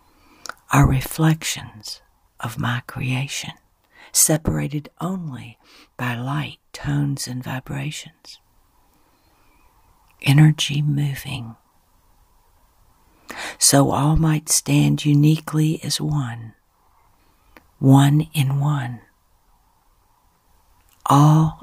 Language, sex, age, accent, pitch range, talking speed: English, female, 50-69, American, 120-150 Hz, 70 wpm